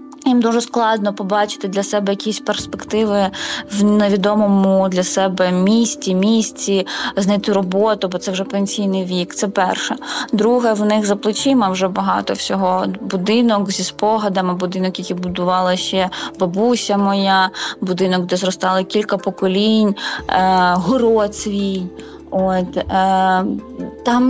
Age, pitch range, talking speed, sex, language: 20-39, 190-220 Hz, 120 wpm, female, Ukrainian